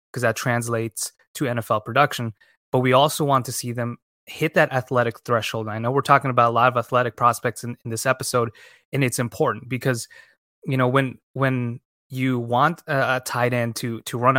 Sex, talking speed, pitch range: male, 200 wpm, 115-130 Hz